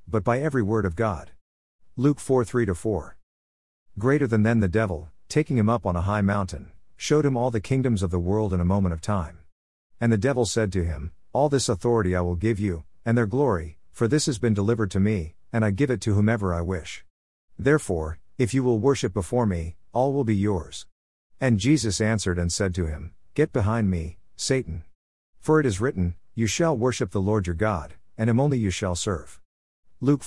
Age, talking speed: 50-69, 210 wpm